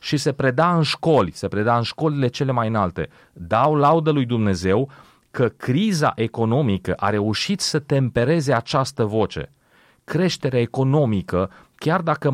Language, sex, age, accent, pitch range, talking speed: Romanian, male, 30-49, native, 115-145 Hz, 140 wpm